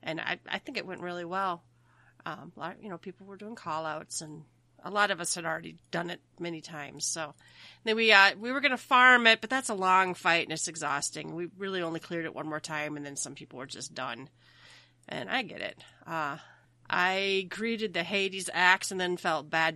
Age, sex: 30-49, female